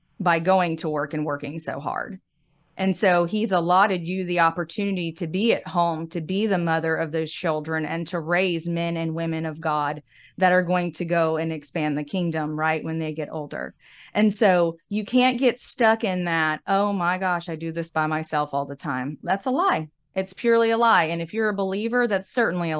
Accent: American